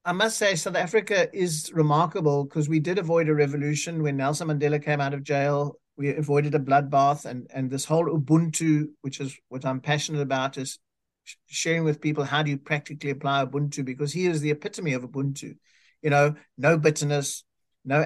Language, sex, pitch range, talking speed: English, male, 145-170 Hz, 190 wpm